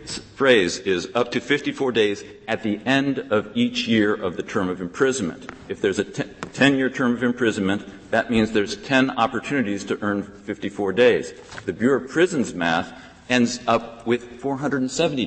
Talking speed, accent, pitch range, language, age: 165 wpm, American, 105-140 Hz, English, 50-69